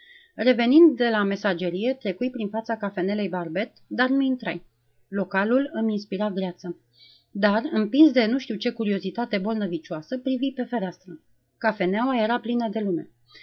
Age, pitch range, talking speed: 30-49, 190-240 Hz, 145 wpm